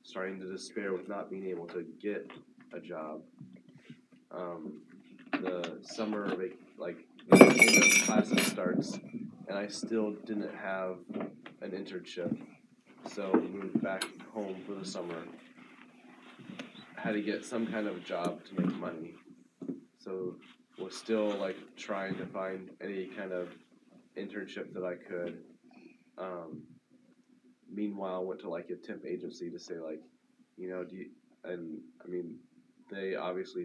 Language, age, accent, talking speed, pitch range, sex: English, 20-39, American, 135 wpm, 90-110 Hz, male